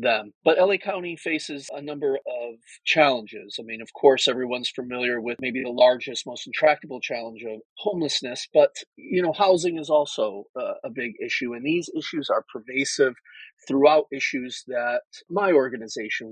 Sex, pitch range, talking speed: male, 120-160 Hz, 160 wpm